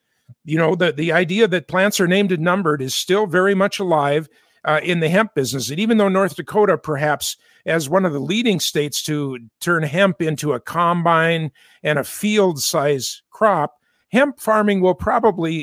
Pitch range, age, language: 160-205 Hz, 50-69, English